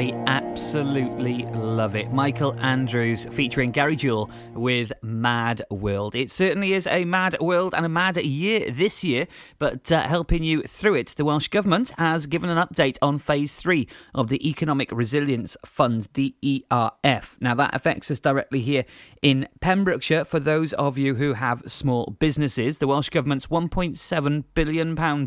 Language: English